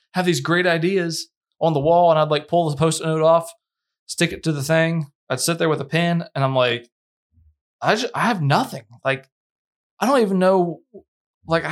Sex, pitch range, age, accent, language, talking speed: male, 125-165 Hz, 20-39, American, English, 205 wpm